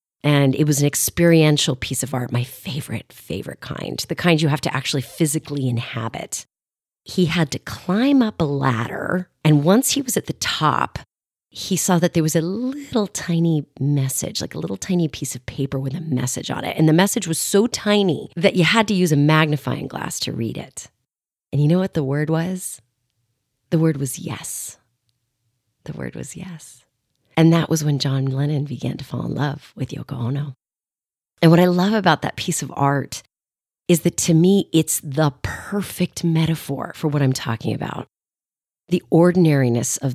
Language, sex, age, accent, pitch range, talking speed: English, female, 30-49, American, 135-175 Hz, 190 wpm